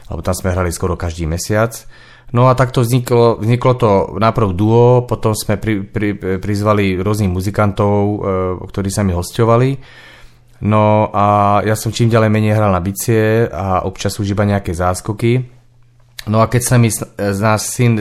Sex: male